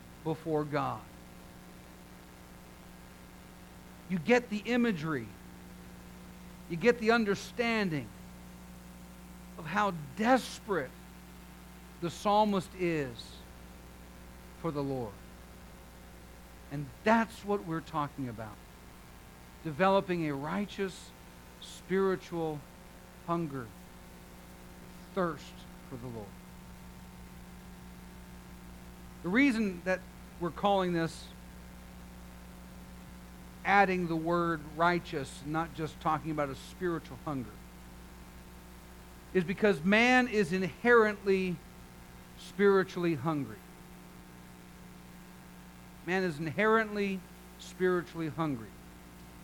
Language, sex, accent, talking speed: English, male, American, 75 wpm